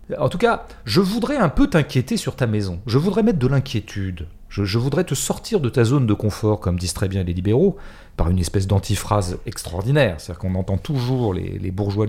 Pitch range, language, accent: 95-135 Hz, French, French